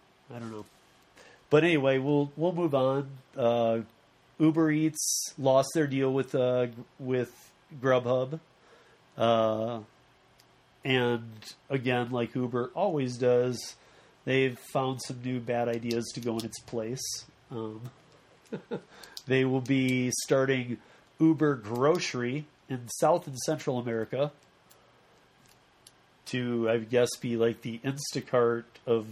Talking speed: 115 wpm